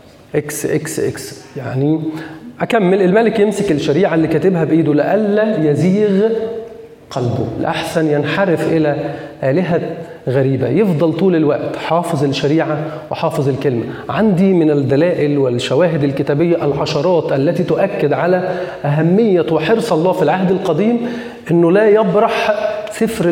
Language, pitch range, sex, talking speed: Arabic, 150-195 Hz, male, 115 wpm